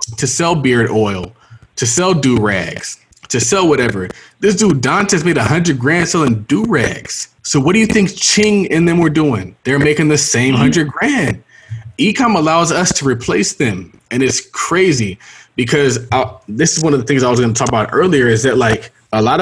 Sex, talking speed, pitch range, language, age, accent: male, 205 wpm, 115-160 Hz, English, 20-39, American